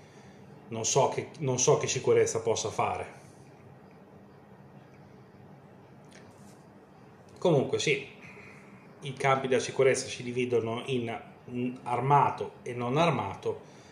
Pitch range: 120-140 Hz